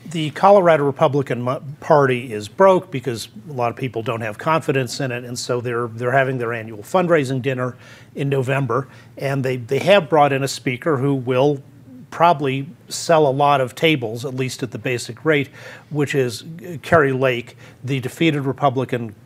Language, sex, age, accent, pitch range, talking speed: English, male, 40-59, American, 125-150 Hz, 175 wpm